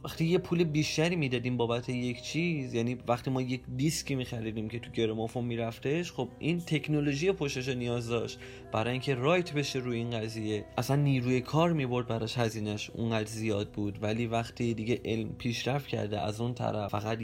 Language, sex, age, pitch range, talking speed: Persian, male, 20-39, 110-145 Hz, 185 wpm